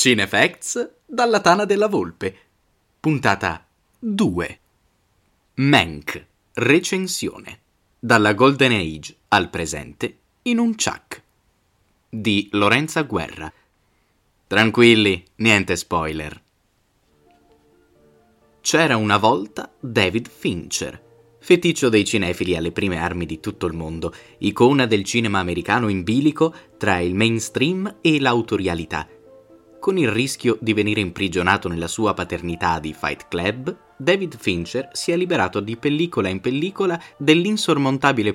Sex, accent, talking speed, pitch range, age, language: male, native, 110 wpm, 90-145 Hz, 20-39, Italian